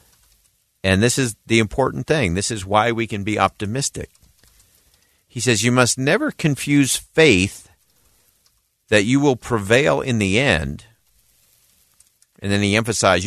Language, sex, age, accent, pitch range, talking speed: English, male, 50-69, American, 95-130 Hz, 140 wpm